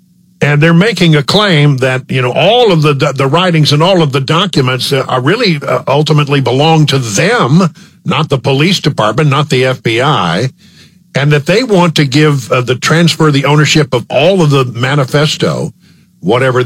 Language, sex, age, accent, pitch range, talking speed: English, male, 50-69, American, 125-165 Hz, 185 wpm